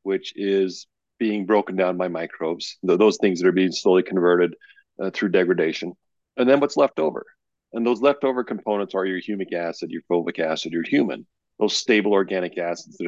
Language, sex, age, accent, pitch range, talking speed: English, male, 40-59, American, 95-125 Hz, 185 wpm